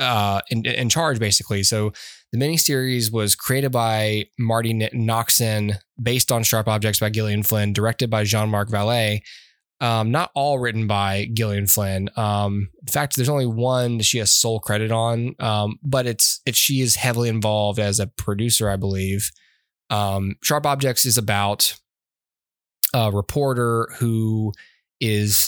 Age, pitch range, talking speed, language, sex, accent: 10-29, 100-120 Hz, 150 wpm, English, male, American